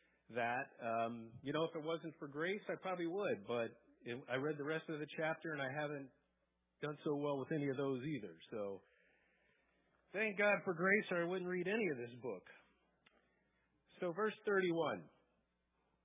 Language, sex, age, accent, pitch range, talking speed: English, male, 40-59, American, 115-170 Hz, 180 wpm